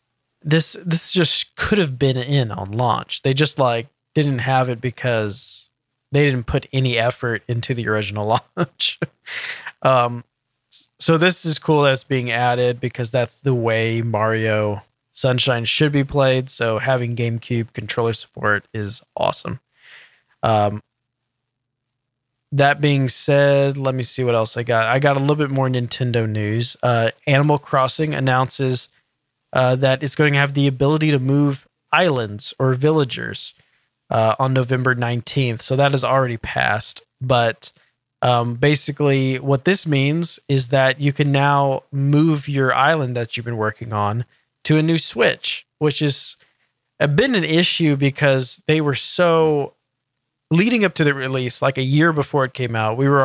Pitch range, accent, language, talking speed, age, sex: 120-140 Hz, American, English, 160 wpm, 20-39, male